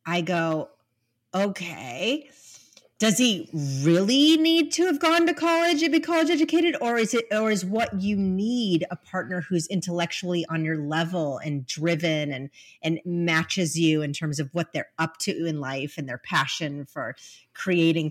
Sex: female